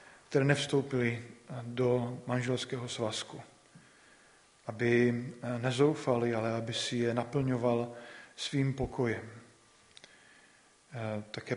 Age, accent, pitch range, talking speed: 40-59, native, 115-130 Hz, 80 wpm